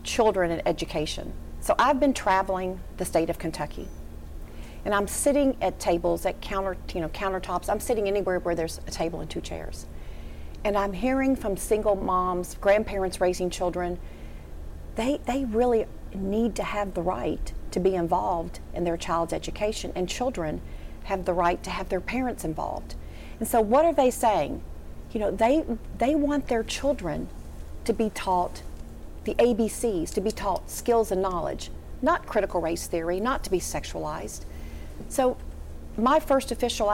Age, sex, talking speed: 40-59, female, 165 wpm